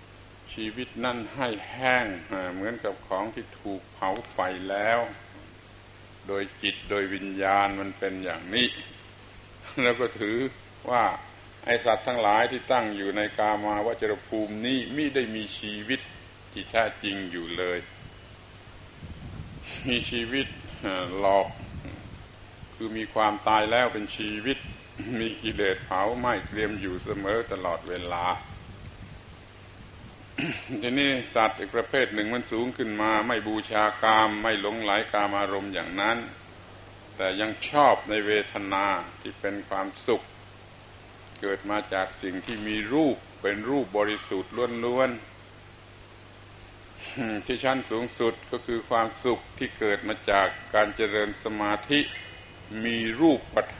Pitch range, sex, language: 95-110 Hz, male, Thai